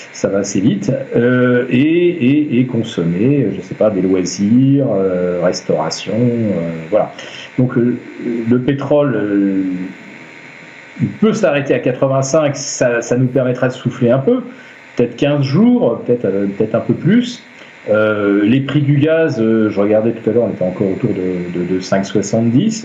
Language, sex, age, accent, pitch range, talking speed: French, male, 40-59, French, 110-155 Hz, 165 wpm